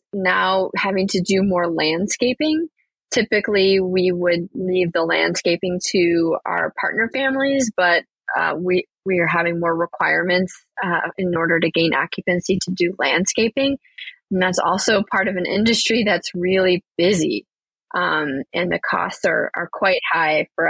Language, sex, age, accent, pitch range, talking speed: English, female, 20-39, American, 175-210 Hz, 150 wpm